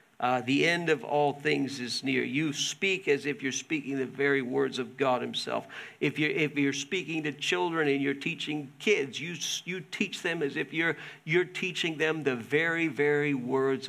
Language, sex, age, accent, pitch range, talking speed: English, male, 50-69, American, 140-170 Hz, 195 wpm